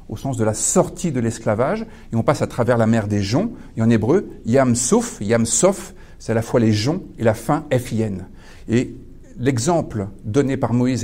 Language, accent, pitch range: French, French, 110-155 Hz